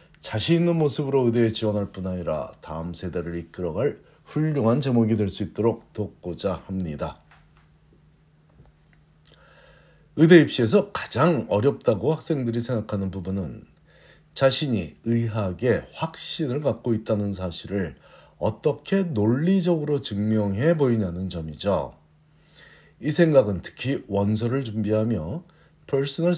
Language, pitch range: Korean, 95-145 Hz